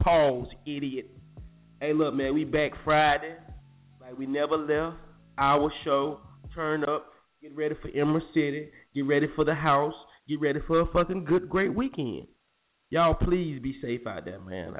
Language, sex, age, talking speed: English, male, 20-39, 165 wpm